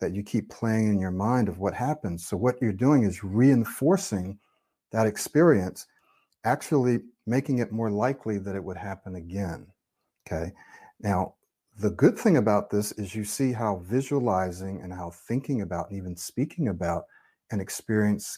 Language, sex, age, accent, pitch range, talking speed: English, male, 50-69, American, 95-125 Hz, 160 wpm